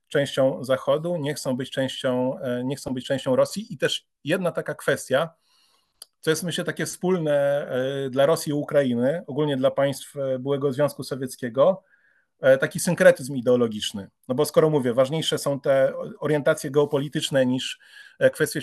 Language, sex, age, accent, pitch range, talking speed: Polish, male, 30-49, native, 135-160 Hz, 135 wpm